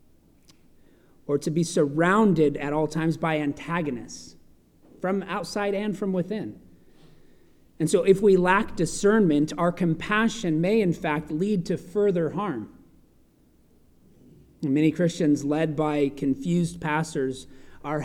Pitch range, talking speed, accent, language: 145-180 Hz, 120 wpm, American, English